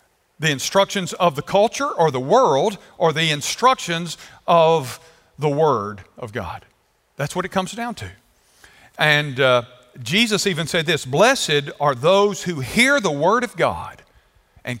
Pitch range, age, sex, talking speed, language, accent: 145-200 Hz, 50-69, male, 155 wpm, English, American